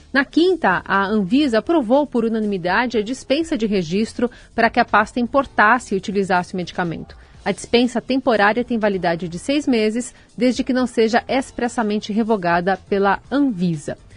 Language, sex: Portuguese, female